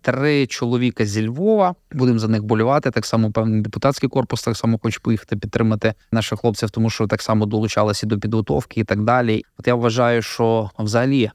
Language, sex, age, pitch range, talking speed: Ukrainian, male, 20-39, 110-125 Hz, 185 wpm